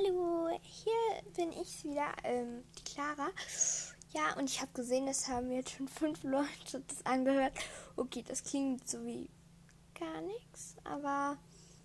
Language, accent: German, German